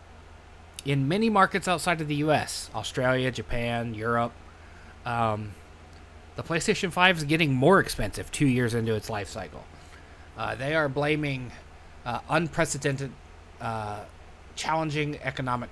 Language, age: English, 20-39